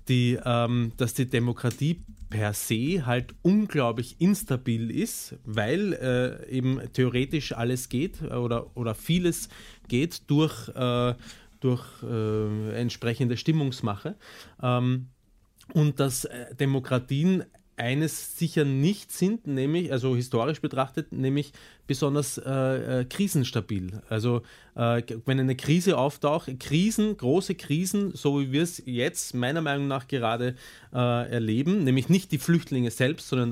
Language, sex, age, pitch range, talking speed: German, male, 30-49, 115-150 Hz, 120 wpm